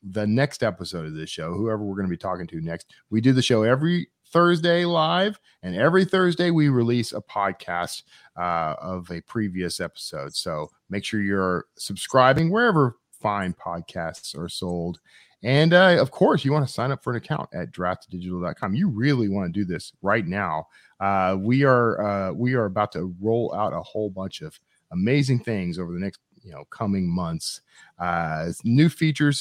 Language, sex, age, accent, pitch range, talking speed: English, male, 40-59, American, 90-140 Hz, 185 wpm